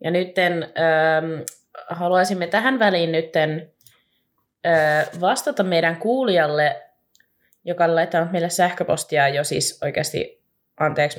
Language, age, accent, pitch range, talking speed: Finnish, 20-39, native, 145-175 Hz, 95 wpm